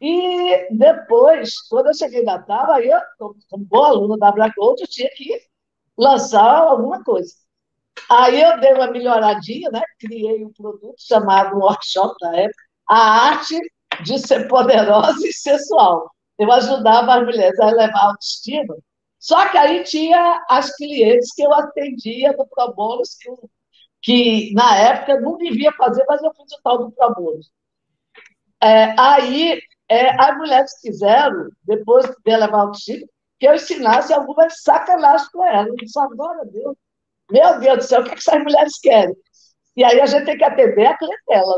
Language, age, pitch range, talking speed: Portuguese, 50-69, 225-325 Hz, 165 wpm